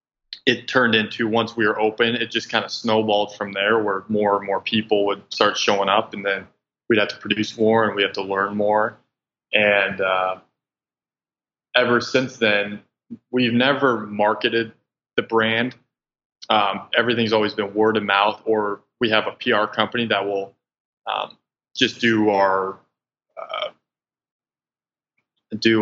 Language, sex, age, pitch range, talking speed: English, male, 20-39, 100-115 Hz, 155 wpm